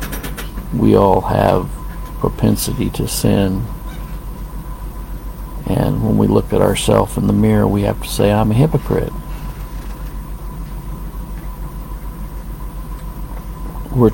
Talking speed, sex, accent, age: 100 wpm, male, American, 50-69